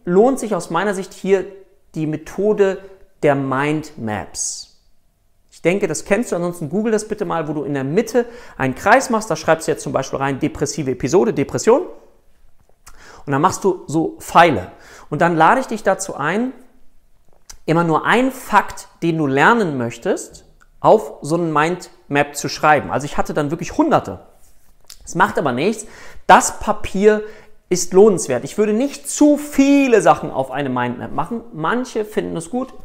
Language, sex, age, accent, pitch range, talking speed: German, male, 40-59, German, 160-220 Hz, 170 wpm